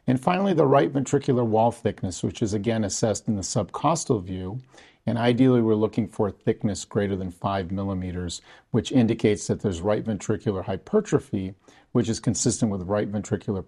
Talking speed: 170 wpm